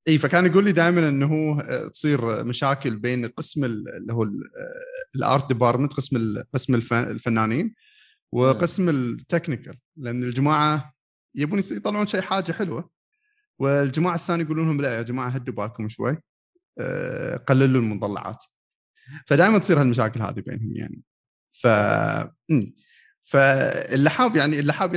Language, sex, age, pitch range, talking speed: Arabic, male, 30-49, 120-160 Hz, 115 wpm